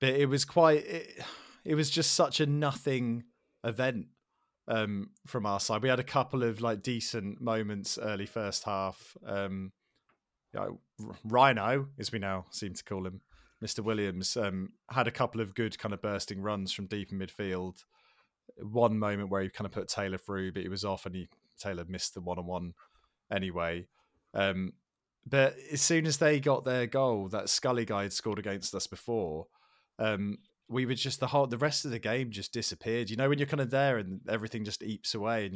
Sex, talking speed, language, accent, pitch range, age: male, 200 wpm, English, British, 95-120 Hz, 20-39